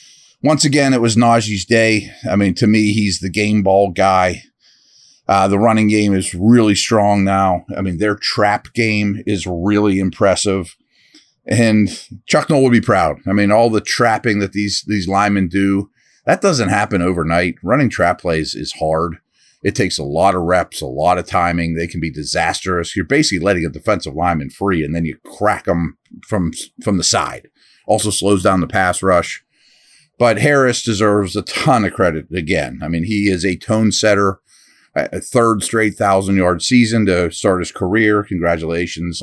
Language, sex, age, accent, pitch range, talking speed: English, male, 40-59, American, 95-115 Hz, 180 wpm